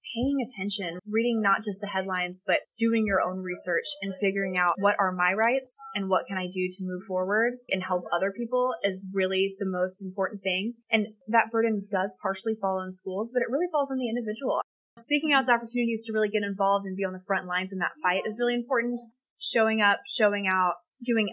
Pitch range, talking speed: 190-245 Hz, 215 wpm